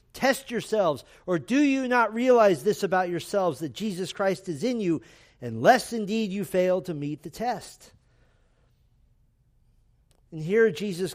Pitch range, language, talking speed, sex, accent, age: 155-220 Hz, English, 145 wpm, male, American, 50-69